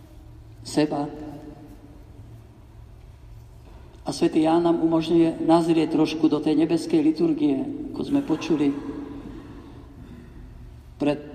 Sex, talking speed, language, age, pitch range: male, 85 wpm, Slovak, 50-69, 150-190 Hz